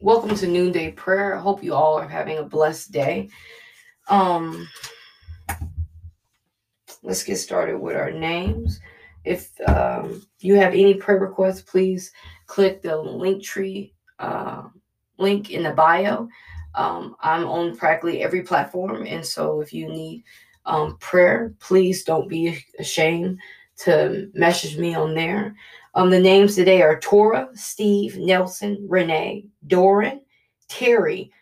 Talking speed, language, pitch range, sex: 135 wpm, English, 165-210 Hz, female